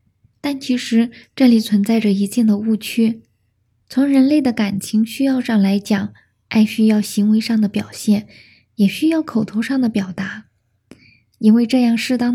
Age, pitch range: 10-29, 205-250 Hz